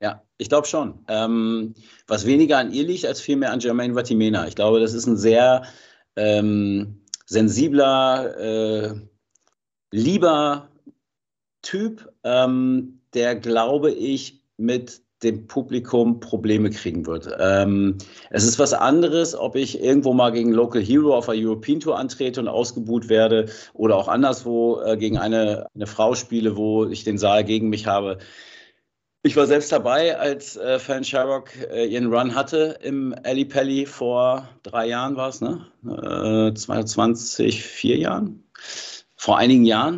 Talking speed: 150 wpm